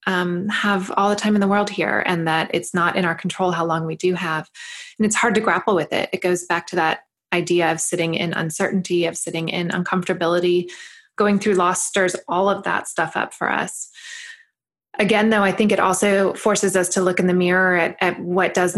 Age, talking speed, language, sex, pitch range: 20-39, 225 wpm, English, female, 175-200 Hz